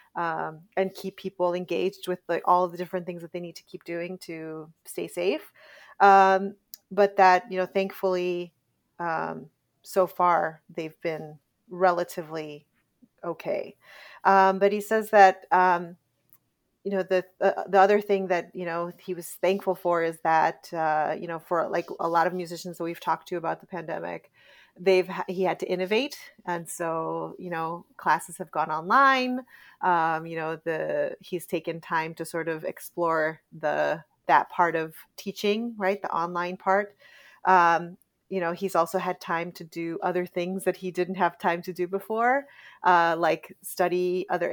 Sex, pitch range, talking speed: female, 165-195 Hz, 170 wpm